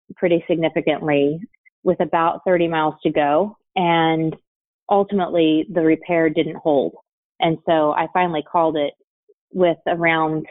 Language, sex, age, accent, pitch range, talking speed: English, female, 30-49, American, 150-175 Hz, 125 wpm